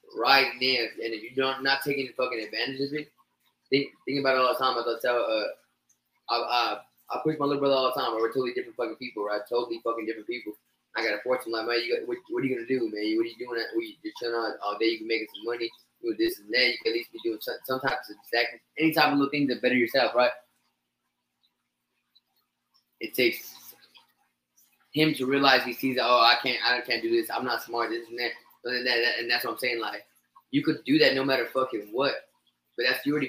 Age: 20-39